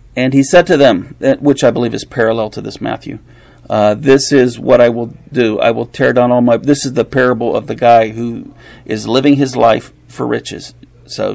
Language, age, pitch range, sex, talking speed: English, 40-59, 115-135 Hz, male, 215 wpm